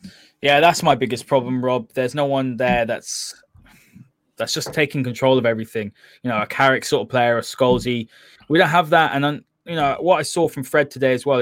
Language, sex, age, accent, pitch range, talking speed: English, male, 20-39, British, 120-145 Hz, 215 wpm